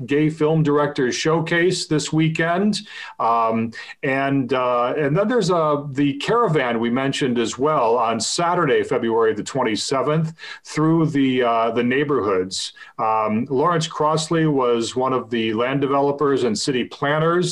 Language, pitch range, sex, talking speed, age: English, 130-165 Hz, male, 145 wpm, 40-59